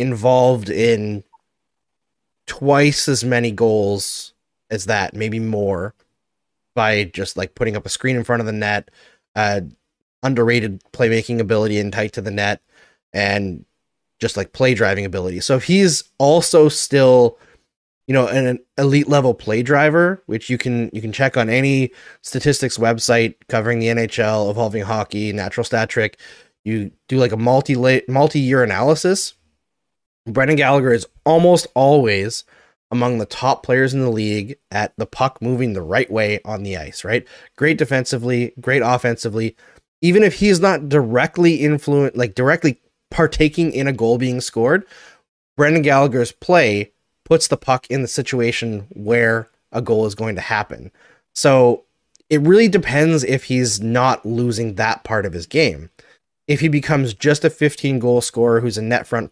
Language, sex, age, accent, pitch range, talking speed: English, male, 20-39, American, 110-140 Hz, 160 wpm